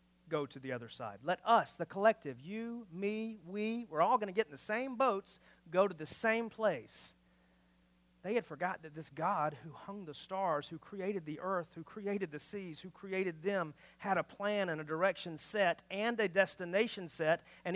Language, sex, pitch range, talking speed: English, male, 150-225 Hz, 200 wpm